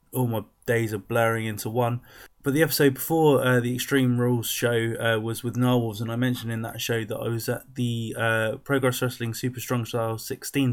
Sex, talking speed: male, 215 wpm